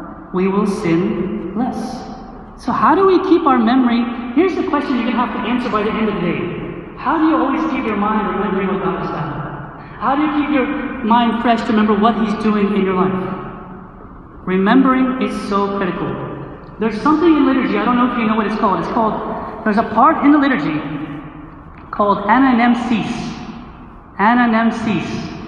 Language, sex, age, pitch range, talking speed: English, male, 40-59, 210-275 Hz, 190 wpm